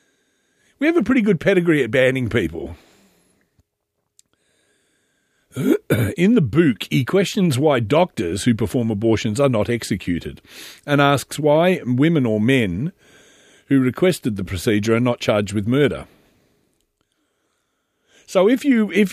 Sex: male